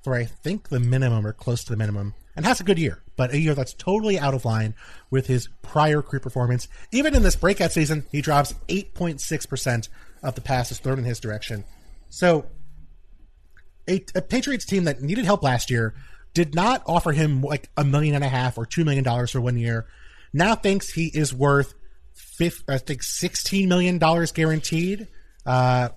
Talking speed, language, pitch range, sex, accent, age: 185 wpm, English, 120-160 Hz, male, American, 30-49